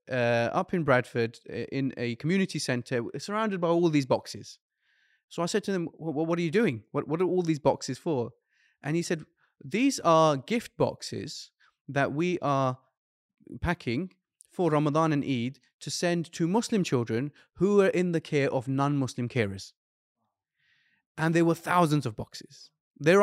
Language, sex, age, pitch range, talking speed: English, male, 20-39, 125-170 Hz, 165 wpm